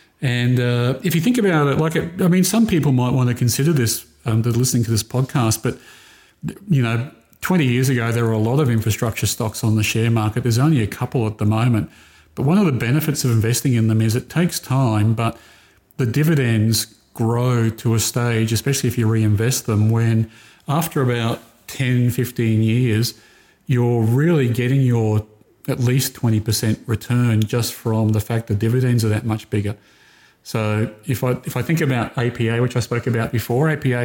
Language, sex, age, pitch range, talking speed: English, male, 40-59, 110-125 Hz, 195 wpm